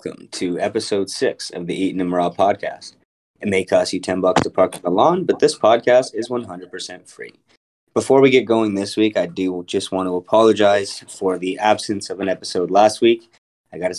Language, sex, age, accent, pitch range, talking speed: English, male, 20-39, American, 90-110 Hz, 205 wpm